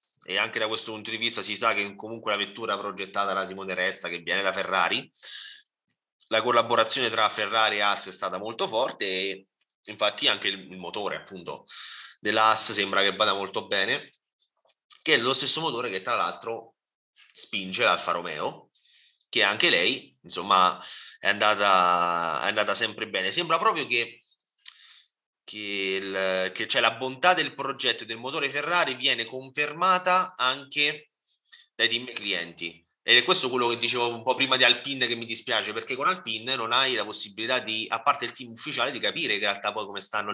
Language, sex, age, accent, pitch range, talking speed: Italian, male, 30-49, native, 100-130 Hz, 175 wpm